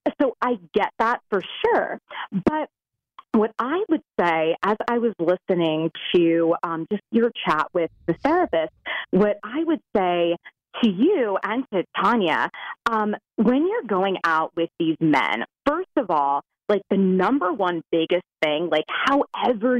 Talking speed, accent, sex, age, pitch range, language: 155 wpm, American, female, 30-49, 180-265 Hz, English